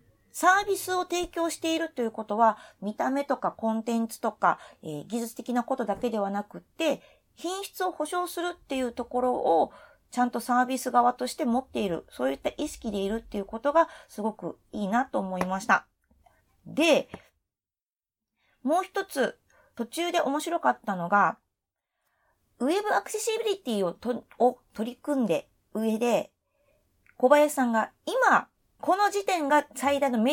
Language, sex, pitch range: Japanese, female, 220-310 Hz